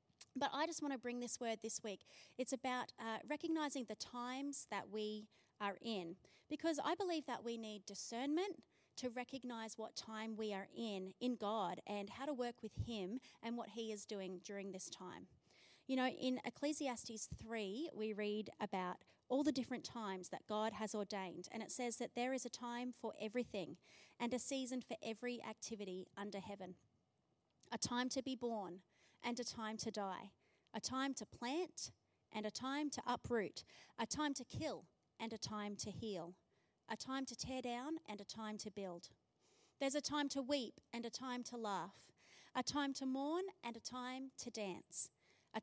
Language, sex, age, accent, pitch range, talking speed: English, female, 30-49, Australian, 215-265 Hz, 185 wpm